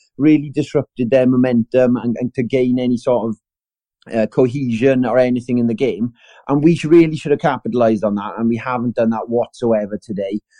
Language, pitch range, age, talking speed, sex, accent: English, 110-125 Hz, 30-49, 185 wpm, male, British